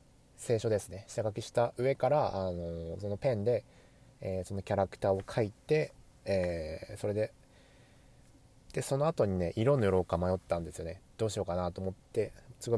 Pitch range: 95-130 Hz